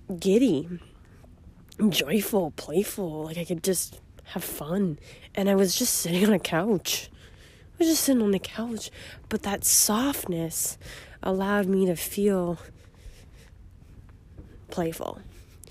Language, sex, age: English, female, 20-39